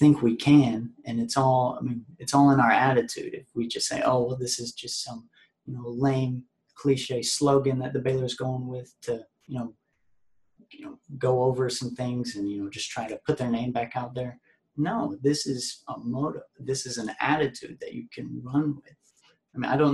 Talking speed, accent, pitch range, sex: 215 wpm, American, 120-140 Hz, male